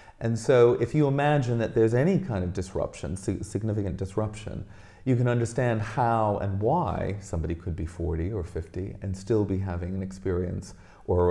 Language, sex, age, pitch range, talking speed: English, male, 40-59, 95-115 Hz, 170 wpm